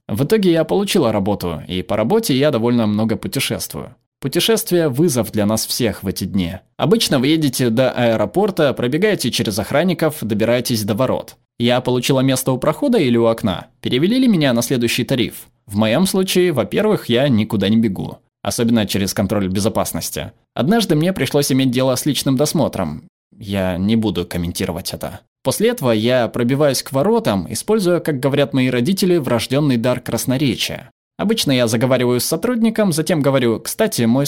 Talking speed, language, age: 160 wpm, Russian, 20-39